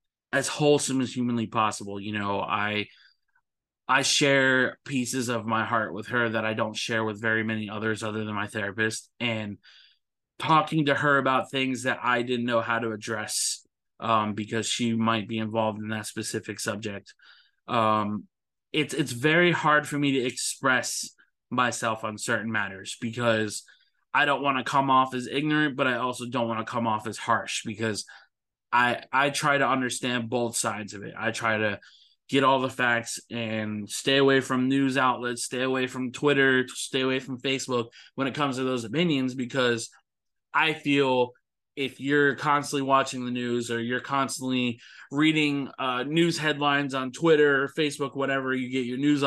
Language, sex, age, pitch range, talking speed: English, male, 20-39, 110-140 Hz, 175 wpm